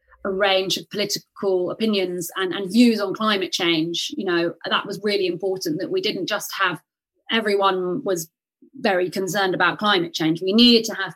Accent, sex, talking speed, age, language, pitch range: British, female, 175 wpm, 30-49, English, 190-250 Hz